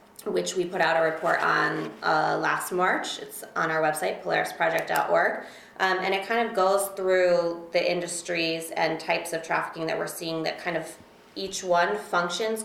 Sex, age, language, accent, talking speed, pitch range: female, 20-39, English, American, 175 wpm, 155-185 Hz